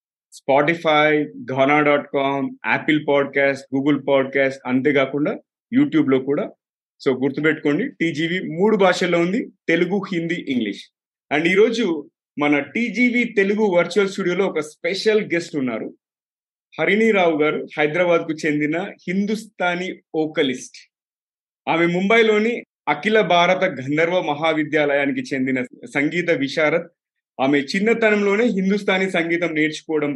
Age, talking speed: 30-49, 115 wpm